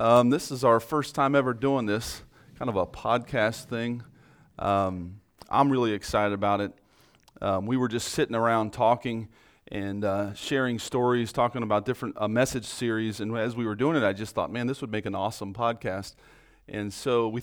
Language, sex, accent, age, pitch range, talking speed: English, male, American, 40-59, 105-125 Hz, 195 wpm